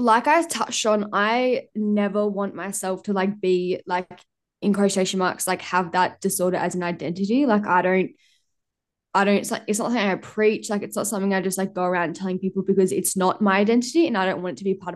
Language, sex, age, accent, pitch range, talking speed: English, female, 10-29, Australian, 185-210 Hz, 235 wpm